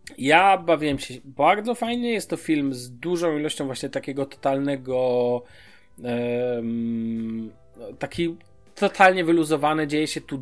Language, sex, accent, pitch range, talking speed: Polish, male, native, 120-160 Hz, 115 wpm